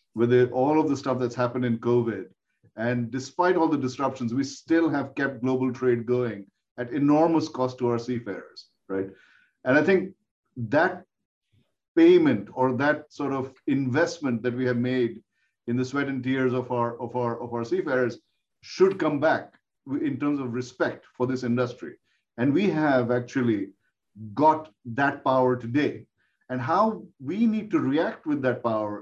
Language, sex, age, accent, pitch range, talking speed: English, male, 50-69, Indian, 120-150 Hz, 165 wpm